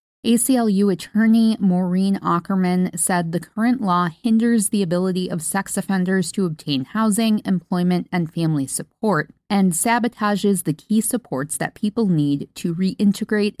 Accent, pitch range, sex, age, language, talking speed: American, 160-205 Hz, female, 20-39, English, 135 wpm